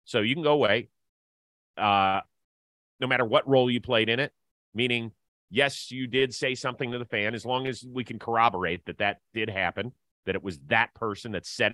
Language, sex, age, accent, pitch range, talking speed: English, male, 30-49, American, 100-135 Hz, 205 wpm